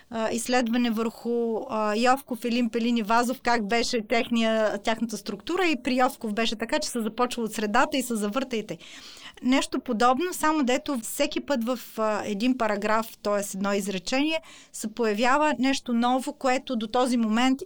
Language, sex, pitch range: Bulgarian, female, 215-270 Hz